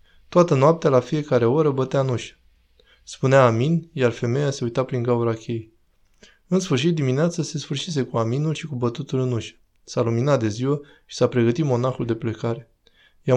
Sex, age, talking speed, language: male, 20-39, 180 wpm, Romanian